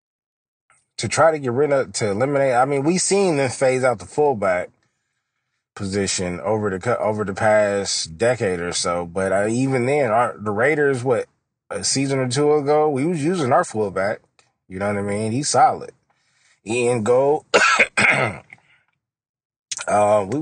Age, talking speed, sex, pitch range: 20-39, 155 wpm, male, 110-170 Hz